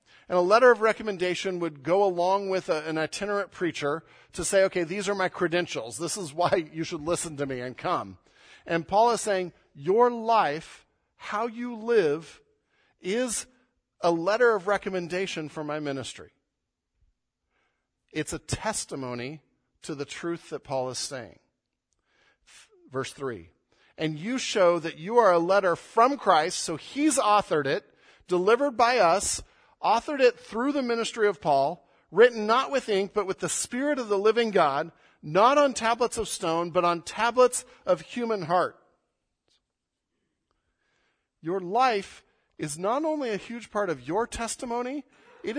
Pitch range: 165-230 Hz